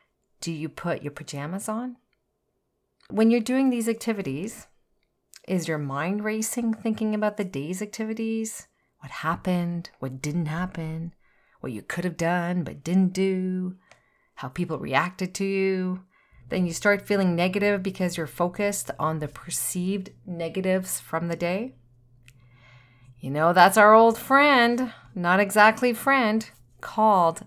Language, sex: English, female